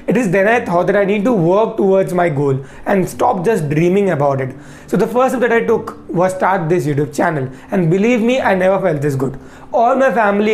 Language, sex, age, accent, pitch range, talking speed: Hindi, male, 20-39, native, 170-225 Hz, 240 wpm